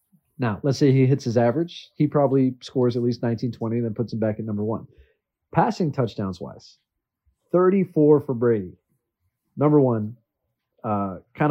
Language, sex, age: English, male, 30-49